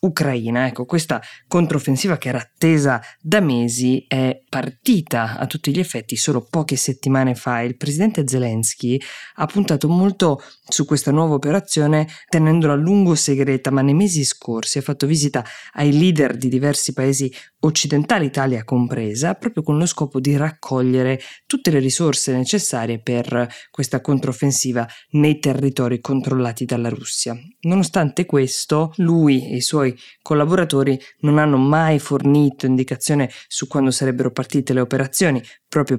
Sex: female